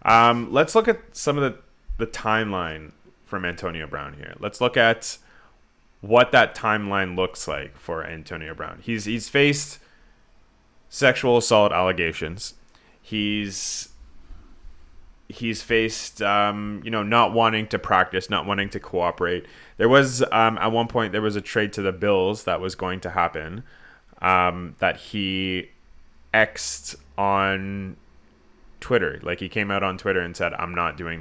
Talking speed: 150 wpm